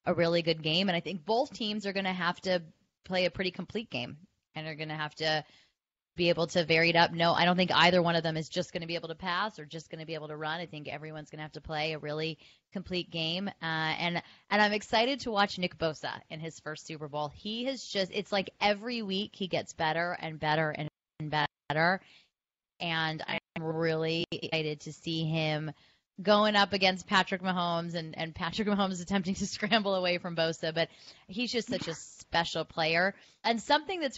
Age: 20-39